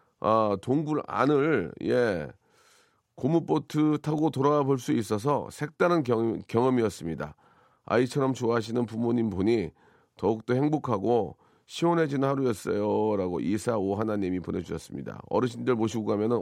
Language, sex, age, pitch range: Korean, male, 40-59, 120-170 Hz